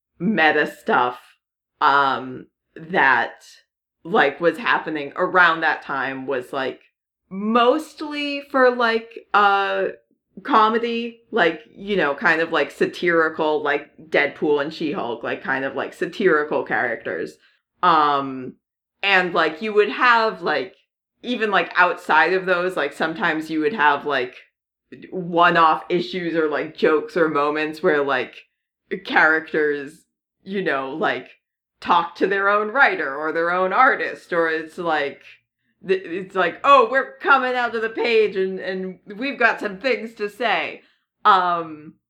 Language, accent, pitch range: English, American, 160-235 Hz